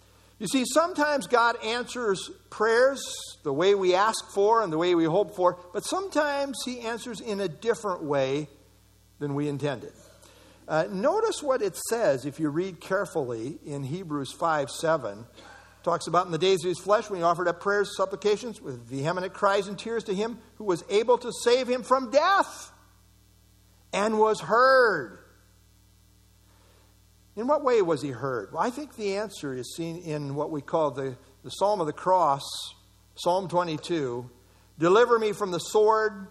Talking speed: 170 wpm